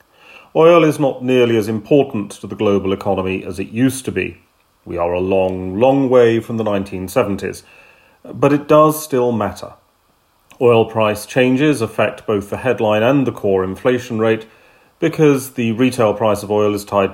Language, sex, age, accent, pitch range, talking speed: English, male, 40-59, British, 100-125 Hz, 170 wpm